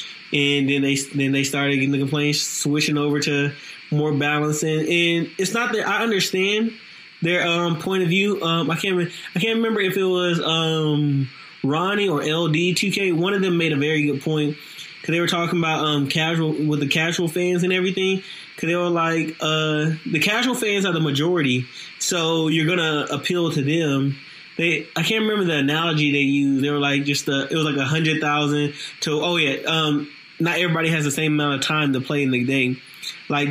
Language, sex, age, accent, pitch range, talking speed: English, male, 20-39, American, 140-165 Hz, 205 wpm